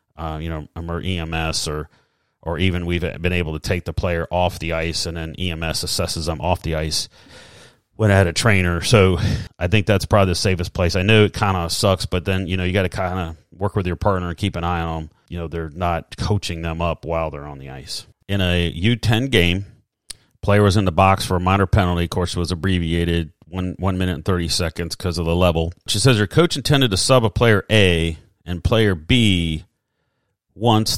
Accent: American